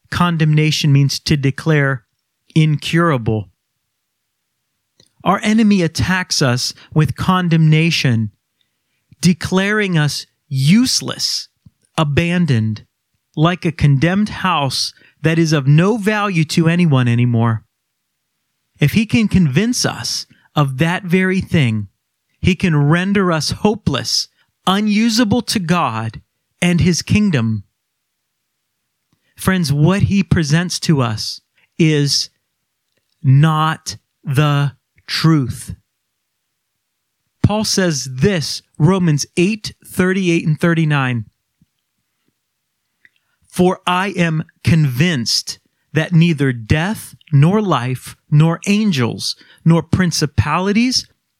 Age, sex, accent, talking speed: 30-49, male, American, 90 wpm